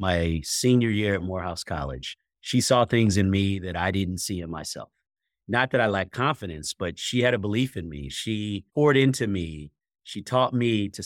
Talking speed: 200 wpm